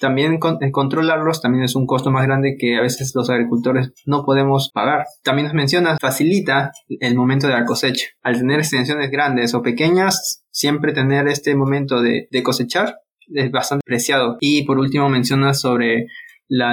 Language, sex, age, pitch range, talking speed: Spanish, male, 20-39, 130-160 Hz, 170 wpm